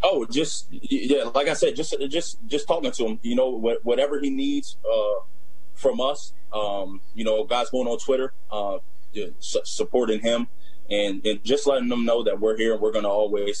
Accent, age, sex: American, 20-39, male